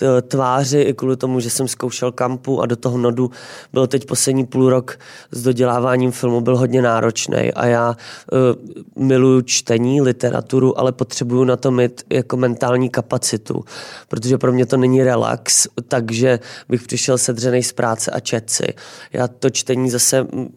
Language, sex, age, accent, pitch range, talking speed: Czech, male, 20-39, native, 125-130 Hz, 160 wpm